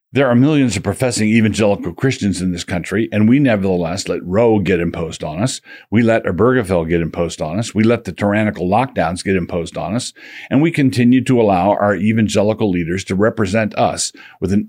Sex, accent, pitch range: male, American, 95-115 Hz